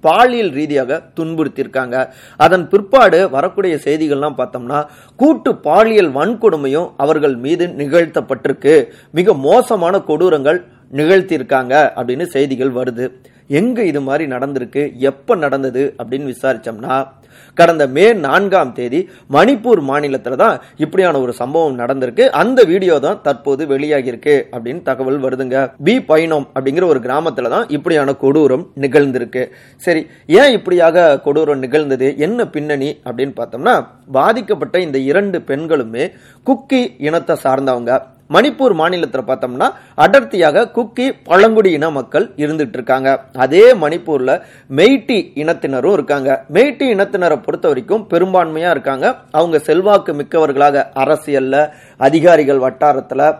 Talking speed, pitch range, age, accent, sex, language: 110 wpm, 135-180 Hz, 30-49, native, male, Tamil